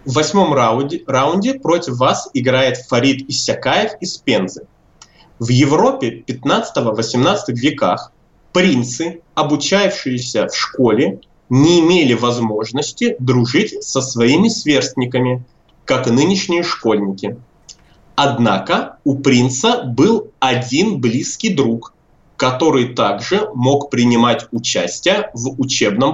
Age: 20-39